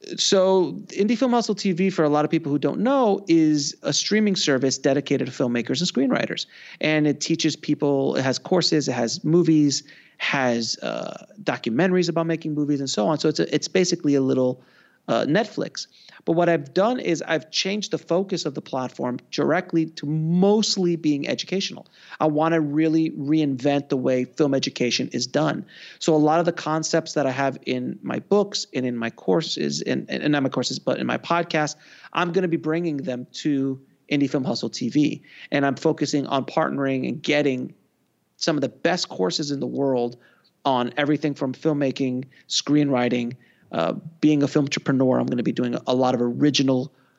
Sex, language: male, English